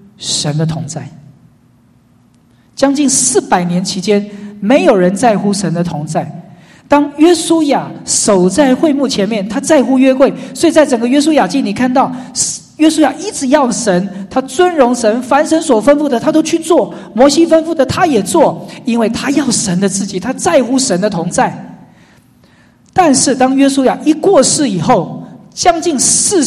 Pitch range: 200-275 Hz